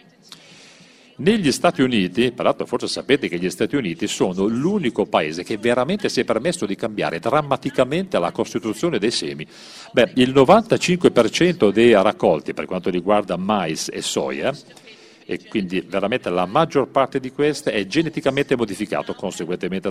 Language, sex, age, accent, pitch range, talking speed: Italian, male, 40-59, native, 105-155 Hz, 145 wpm